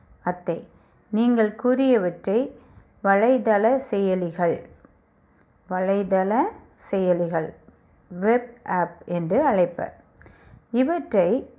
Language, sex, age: Tamil, female, 30-49